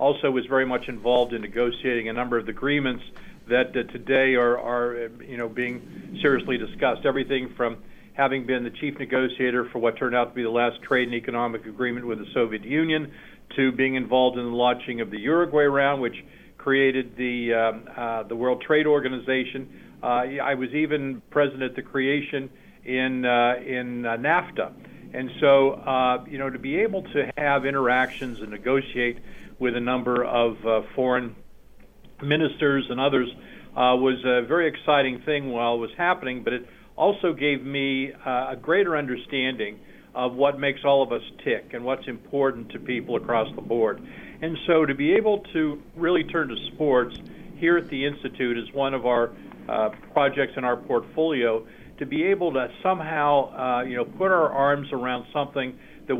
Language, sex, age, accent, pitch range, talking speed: English, male, 50-69, American, 120-140 Hz, 180 wpm